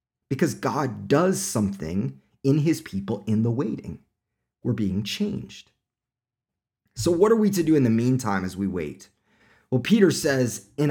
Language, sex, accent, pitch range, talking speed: English, male, American, 105-145 Hz, 160 wpm